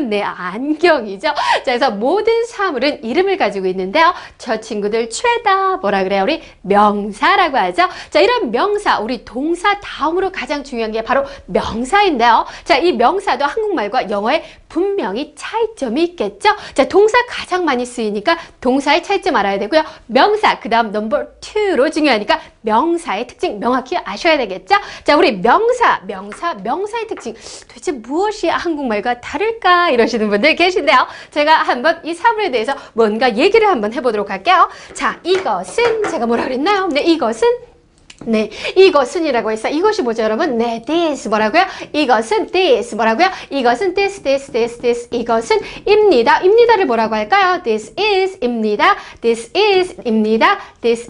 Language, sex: Korean, female